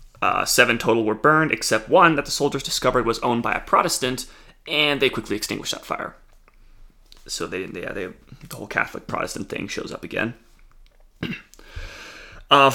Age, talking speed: 30-49, 160 wpm